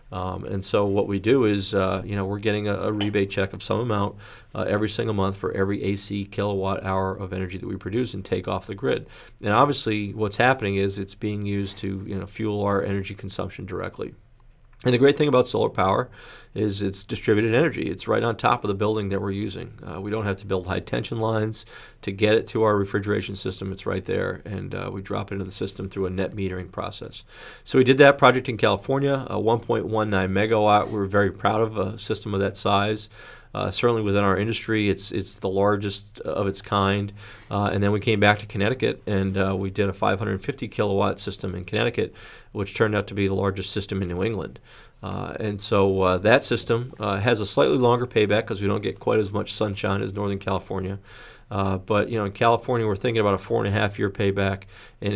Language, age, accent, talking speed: English, 40-59, American, 225 wpm